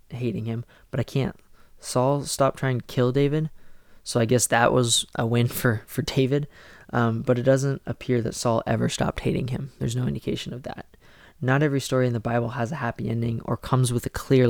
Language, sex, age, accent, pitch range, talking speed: English, male, 20-39, American, 120-135 Hz, 215 wpm